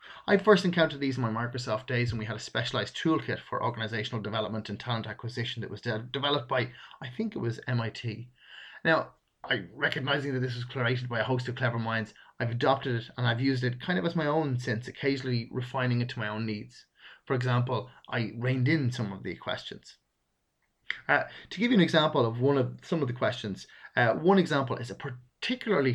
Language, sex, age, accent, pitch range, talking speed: English, male, 30-49, Irish, 115-140 Hz, 215 wpm